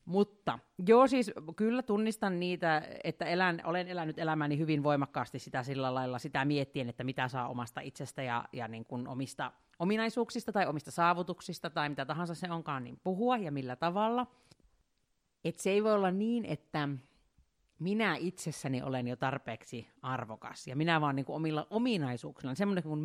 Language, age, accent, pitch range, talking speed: Finnish, 40-59, native, 135-185 Hz, 165 wpm